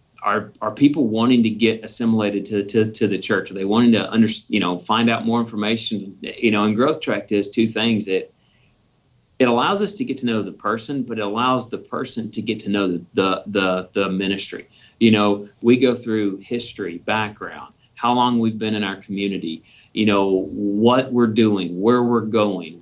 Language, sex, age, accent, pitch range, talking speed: English, male, 40-59, American, 100-120 Hz, 200 wpm